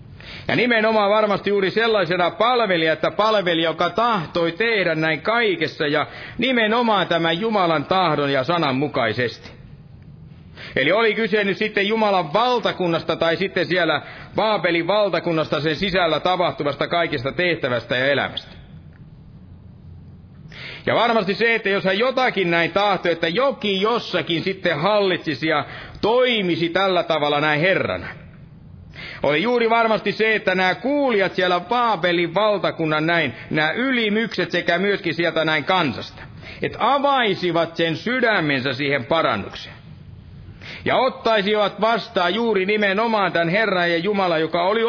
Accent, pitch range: native, 160-210 Hz